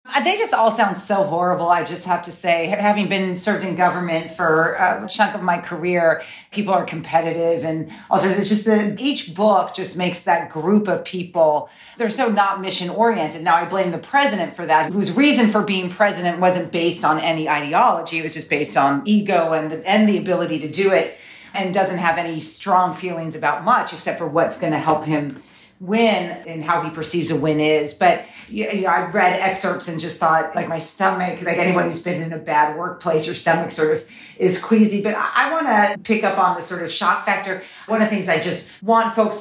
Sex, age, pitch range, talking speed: female, 40-59, 165-205 Hz, 220 wpm